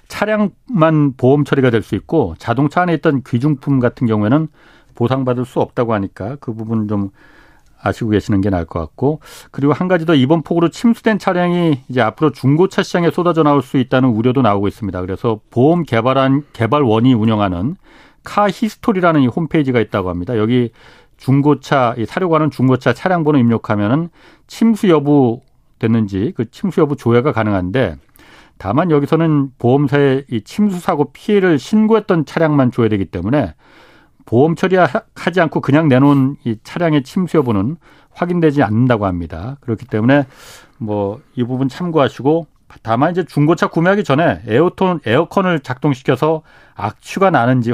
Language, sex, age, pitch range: Korean, male, 40-59, 120-170 Hz